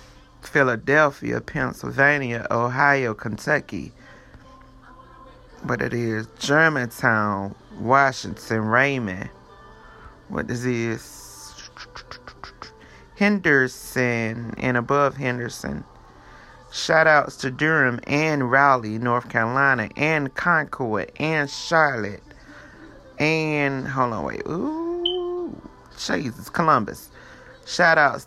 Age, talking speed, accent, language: 30-49, 75 wpm, American, English